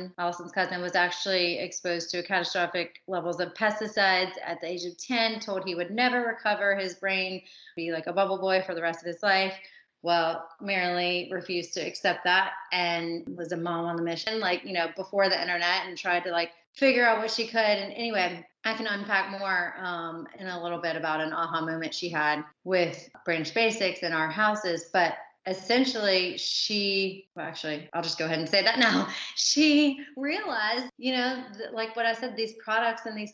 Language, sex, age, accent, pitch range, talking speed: English, female, 30-49, American, 175-220 Hz, 195 wpm